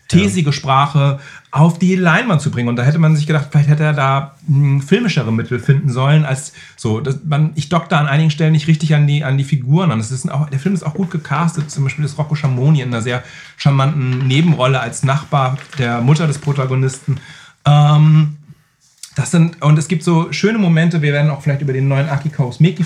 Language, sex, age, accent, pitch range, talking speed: German, male, 40-59, German, 130-160 Hz, 215 wpm